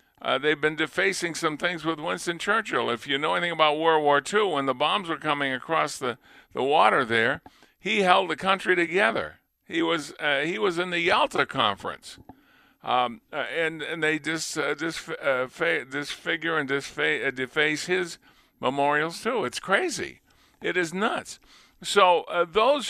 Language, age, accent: English, 50-69, American